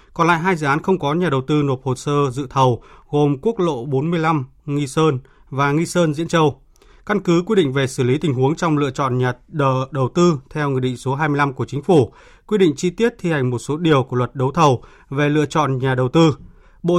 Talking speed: 245 wpm